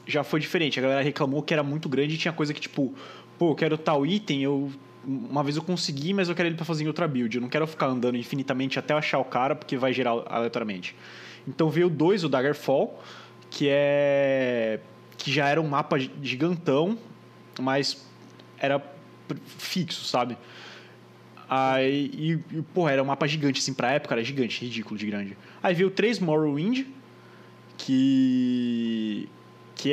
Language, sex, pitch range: Portuguese, male, 125-160 Hz